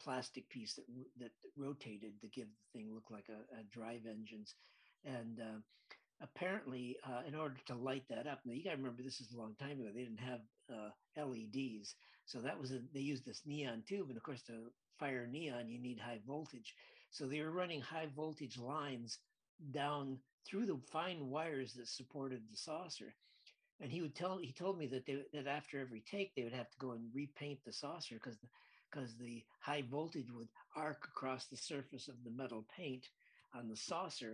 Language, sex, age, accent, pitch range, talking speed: English, male, 50-69, American, 120-155 Hz, 200 wpm